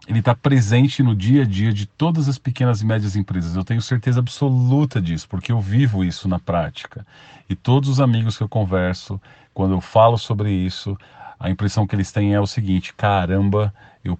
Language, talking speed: Portuguese, 200 wpm